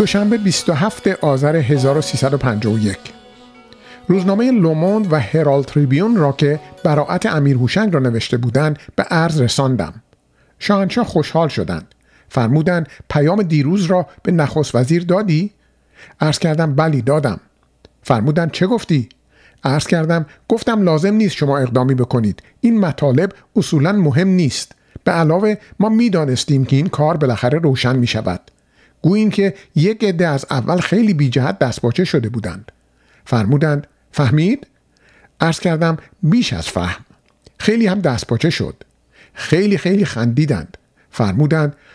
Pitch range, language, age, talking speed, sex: 130-185 Hz, Persian, 50-69, 125 wpm, male